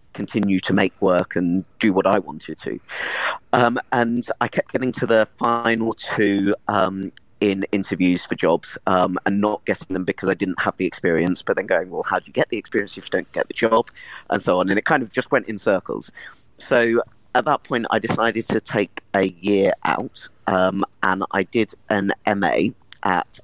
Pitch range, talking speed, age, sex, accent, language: 95-115 Hz, 205 wpm, 40-59, male, British, English